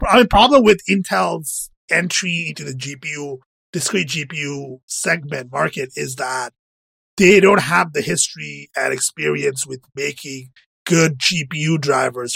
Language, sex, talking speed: English, male, 135 wpm